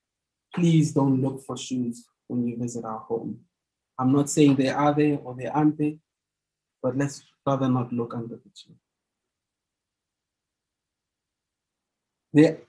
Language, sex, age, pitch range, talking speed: English, male, 20-39, 130-150 Hz, 130 wpm